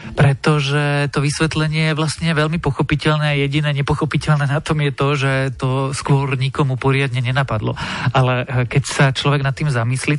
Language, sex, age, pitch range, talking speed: Slovak, male, 40-59, 130-150 Hz, 160 wpm